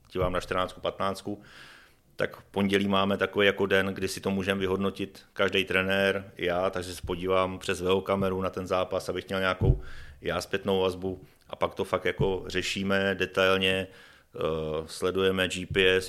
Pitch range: 90-95 Hz